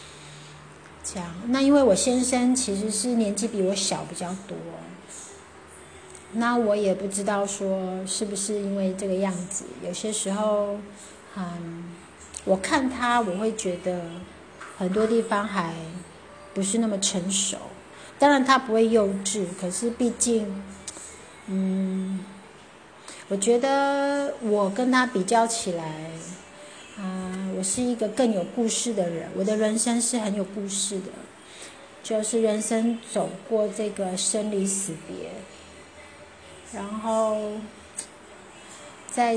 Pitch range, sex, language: 190-230 Hz, female, Chinese